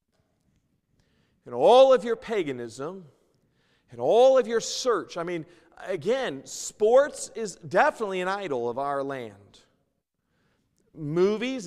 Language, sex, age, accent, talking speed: English, male, 40-59, American, 115 wpm